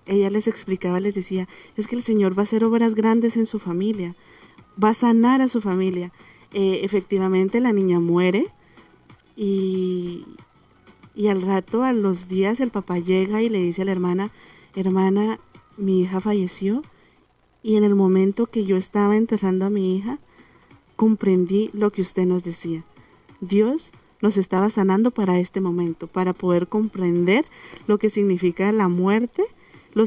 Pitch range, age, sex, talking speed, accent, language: 185-215 Hz, 30-49, female, 160 wpm, Colombian, Spanish